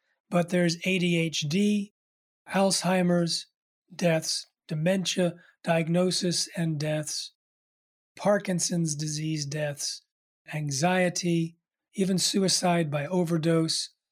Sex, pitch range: male, 160-190 Hz